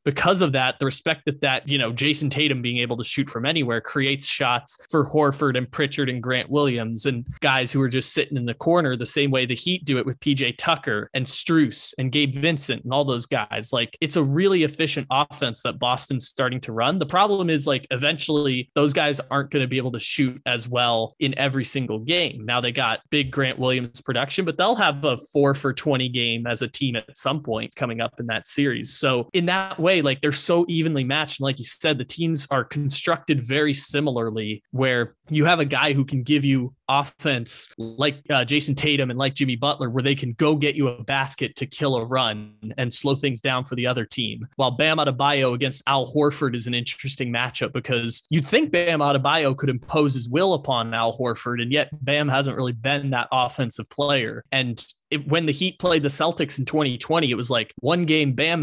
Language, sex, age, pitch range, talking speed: English, male, 20-39, 125-150 Hz, 220 wpm